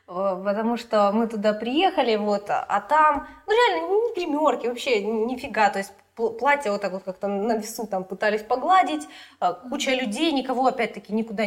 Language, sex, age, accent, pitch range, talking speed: Russian, female, 20-39, native, 195-275 Hz, 160 wpm